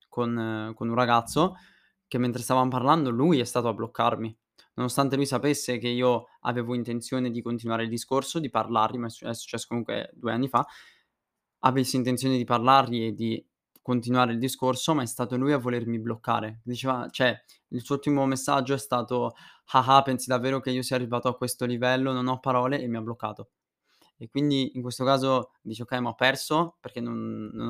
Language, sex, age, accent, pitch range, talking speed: Italian, male, 20-39, native, 115-130 Hz, 190 wpm